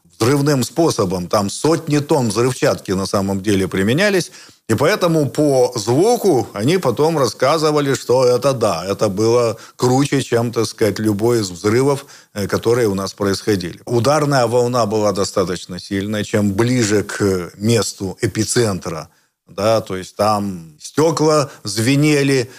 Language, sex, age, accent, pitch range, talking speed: Russian, male, 50-69, native, 100-135 Hz, 130 wpm